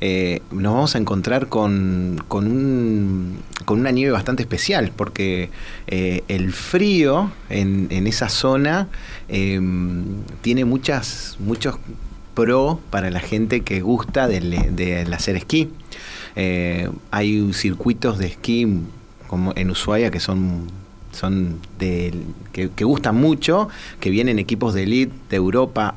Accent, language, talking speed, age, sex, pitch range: Argentinian, Spanish, 130 wpm, 30-49, male, 95-120 Hz